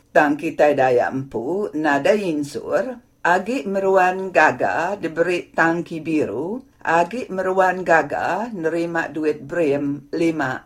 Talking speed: 105 wpm